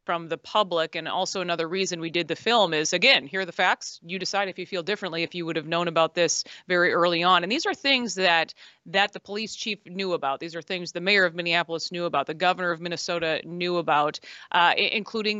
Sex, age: female, 30-49